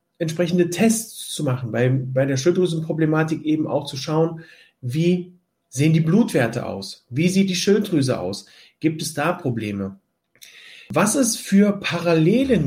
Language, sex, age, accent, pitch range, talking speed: German, male, 40-59, German, 130-175 Hz, 140 wpm